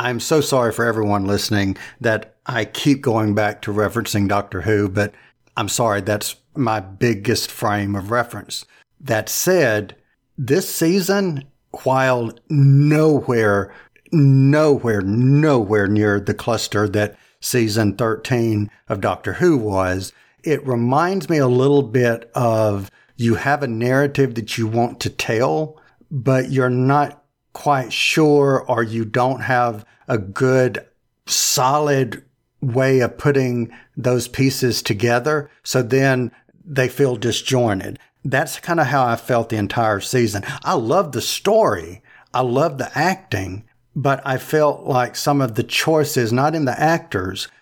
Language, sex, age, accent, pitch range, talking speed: English, male, 50-69, American, 110-140 Hz, 140 wpm